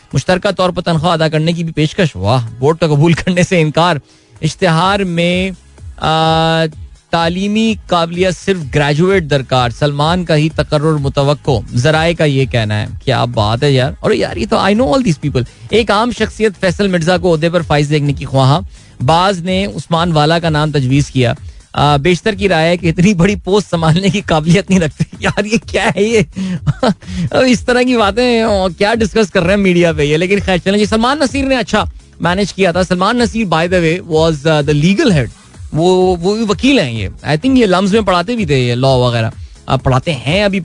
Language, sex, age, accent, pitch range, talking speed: Hindi, male, 20-39, native, 145-195 Hz, 190 wpm